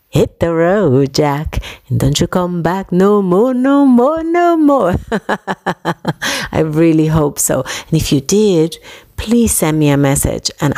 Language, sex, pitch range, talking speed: English, female, 140-185 Hz, 160 wpm